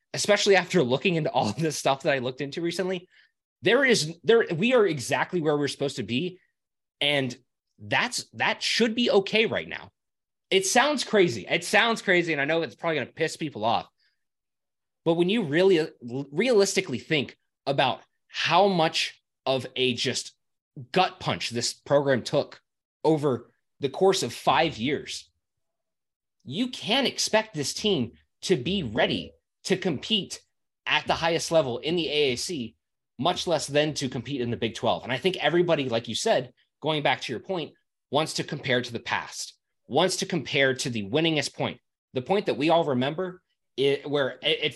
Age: 20-39